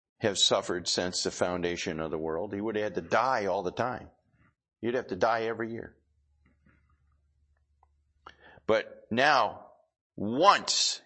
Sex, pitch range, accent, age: male, 90-130 Hz, American, 50-69